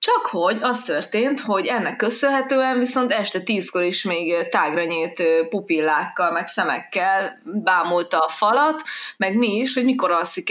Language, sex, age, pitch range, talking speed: Hungarian, female, 20-39, 170-230 Hz, 145 wpm